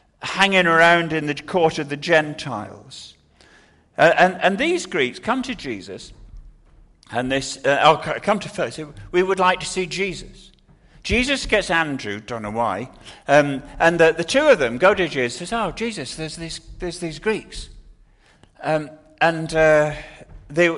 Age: 50-69